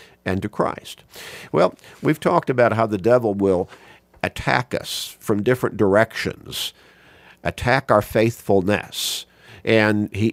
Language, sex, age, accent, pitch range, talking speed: English, male, 50-69, American, 100-120 Hz, 120 wpm